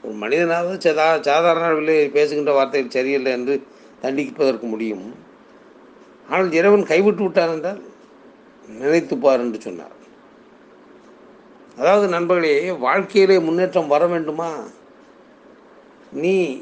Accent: native